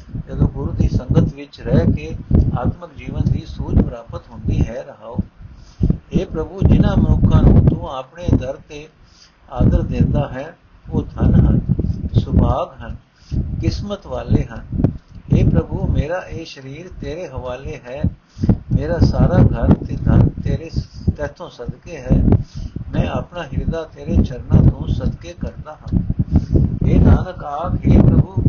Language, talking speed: Punjabi, 120 wpm